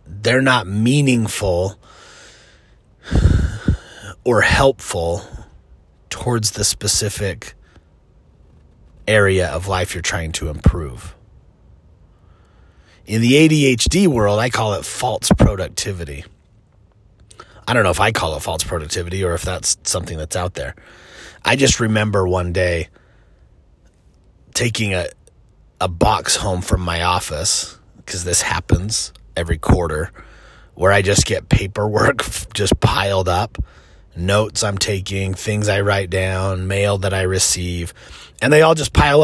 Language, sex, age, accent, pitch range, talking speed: English, male, 30-49, American, 85-115 Hz, 125 wpm